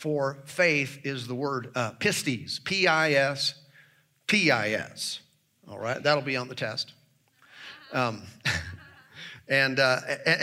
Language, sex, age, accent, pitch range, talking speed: English, male, 50-69, American, 135-175 Hz, 110 wpm